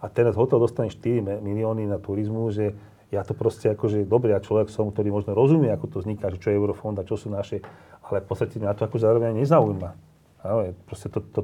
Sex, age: male, 40-59